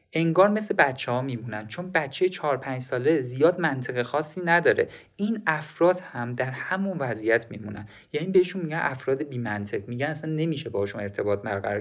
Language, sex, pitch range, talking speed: Persian, male, 125-185 Hz, 160 wpm